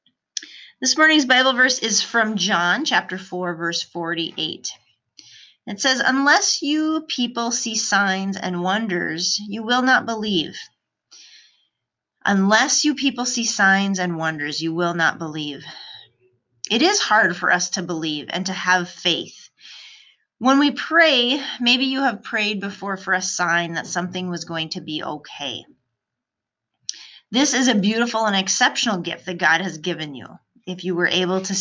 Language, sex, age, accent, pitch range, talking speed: English, female, 30-49, American, 175-245 Hz, 155 wpm